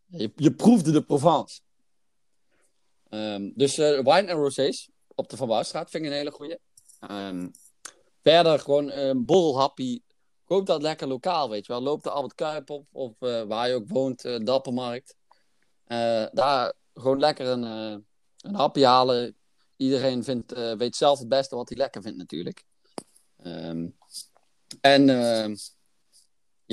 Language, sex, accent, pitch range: Dutch, male, Dutch, 115-155 Hz